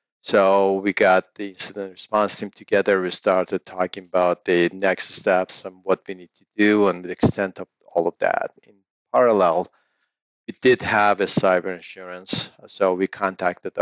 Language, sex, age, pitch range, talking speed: English, male, 40-59, 90-105 Hz, 170 wpm